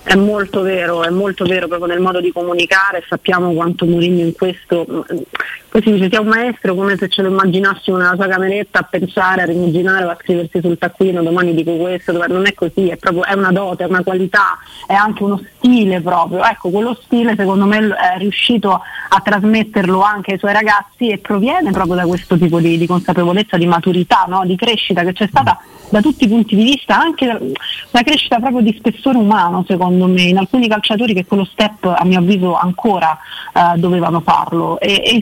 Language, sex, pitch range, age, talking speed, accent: Italian, female, 175-210 Hz, 30-49, 200 wpm, native